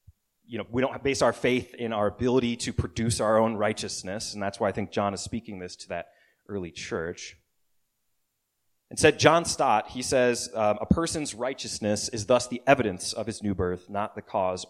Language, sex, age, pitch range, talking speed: English, male, 30-49, 105-135 Hz, 195 wpm